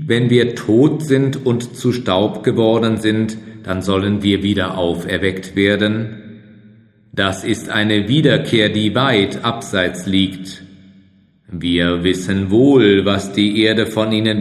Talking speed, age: 130 wpm, 40-59